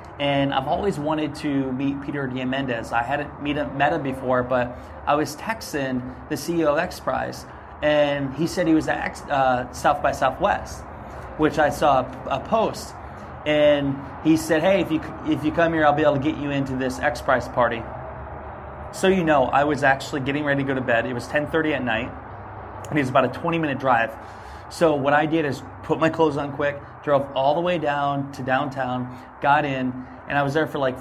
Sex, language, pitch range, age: male, English, 130-150 Hz, 20-39